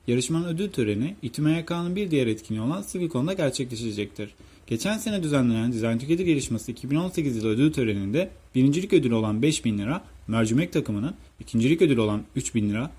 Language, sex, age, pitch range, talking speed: Turkish, male, 30-49, 110-160 Hz, 150 wpm